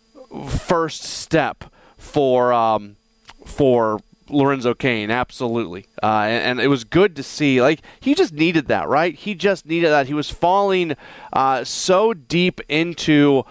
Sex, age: male, 30-49